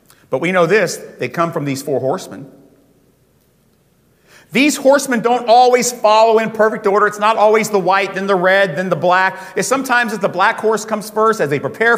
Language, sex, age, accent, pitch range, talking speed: English, male, 40-59, American, 155-225 Hz, 200 wpm